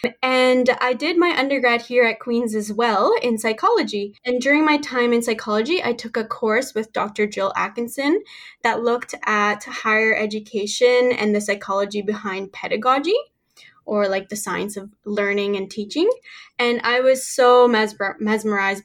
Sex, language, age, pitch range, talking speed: female, English, 10-29, 205-245 Hz, 155 wpm